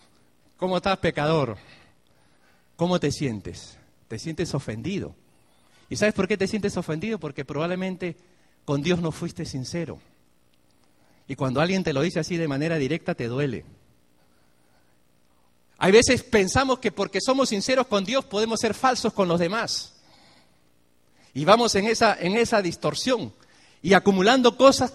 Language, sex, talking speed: Spanish, male, 140 wpm